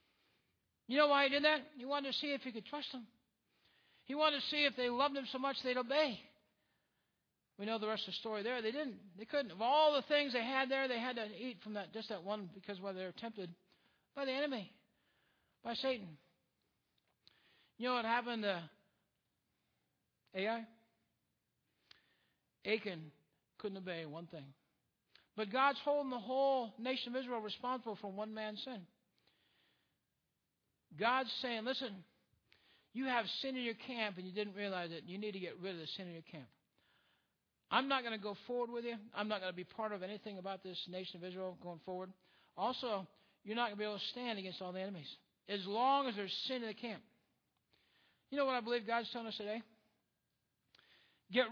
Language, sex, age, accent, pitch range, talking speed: English, male, 60-79, American, 200-260 Hz, 195 wpm